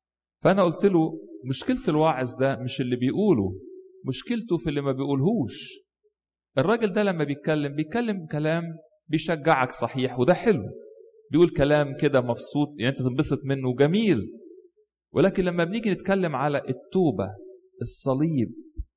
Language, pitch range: English, 125-170 Hz